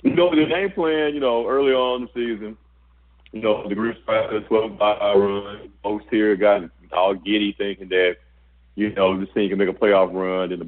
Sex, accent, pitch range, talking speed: male, American, 90-135 Hz, 200 wpm